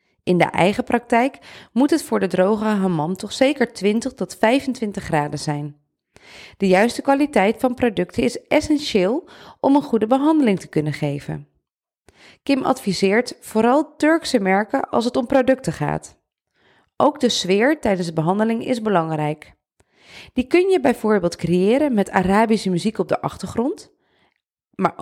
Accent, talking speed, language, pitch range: Dutch, 145 wpm, Dutch, 180-260 Hz